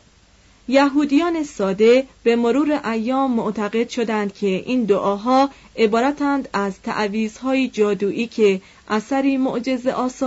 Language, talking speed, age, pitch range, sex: Persian, 105 wpm, 30-49, 210-265 Hz, female